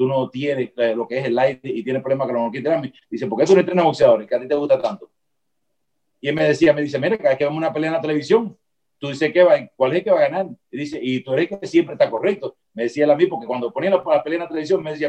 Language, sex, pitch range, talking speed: Spanish, male, 135-180 Hz, 310 wpm